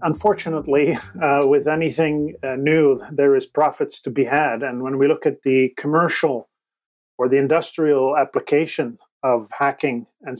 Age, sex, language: 40-59, male, English